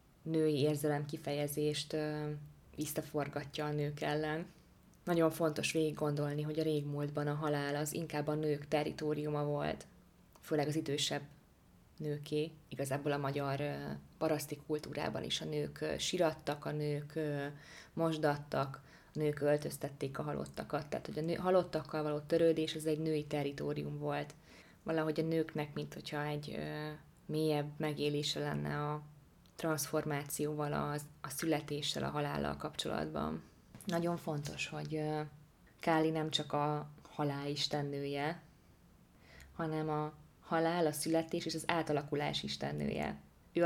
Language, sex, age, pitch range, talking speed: Hungarian, female, 20-39, 145-155 Hz, 120 wpm